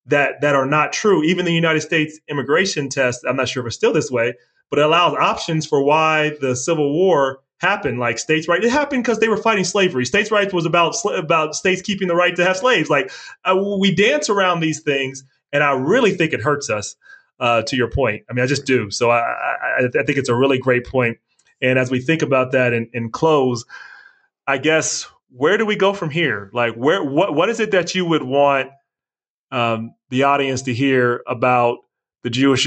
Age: 30-49